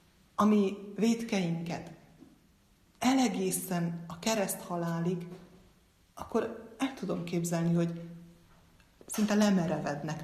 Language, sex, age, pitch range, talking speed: Hungarian, female, 30-49, 170-210 Hz, 75 wpm